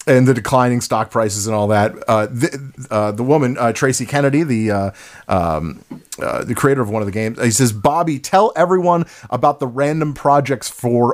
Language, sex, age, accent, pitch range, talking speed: English, male, 30-49, American, 120-150 Hz, 205 wpm